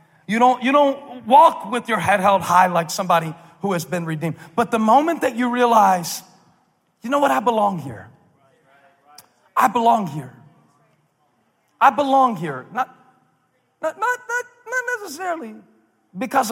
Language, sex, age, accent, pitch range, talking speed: English, male, 40-59, American, 185-270 Hz, 140 wpm